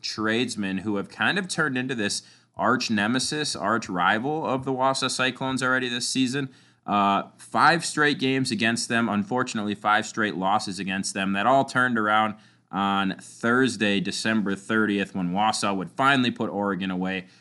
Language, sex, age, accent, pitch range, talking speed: English, male, 20-39, American, 95-115 Hz, 160 wpm